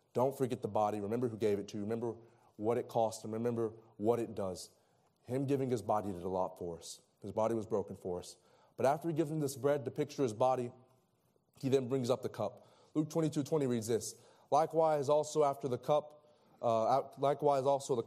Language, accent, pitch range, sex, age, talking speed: English, American, 115-150 Hz, male, 30-49, 215 wpm